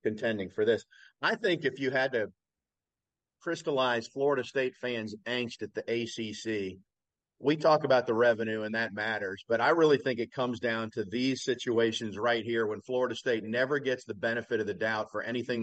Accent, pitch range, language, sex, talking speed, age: American, 115-140 Hz, English, male, 190 wpm, 50-69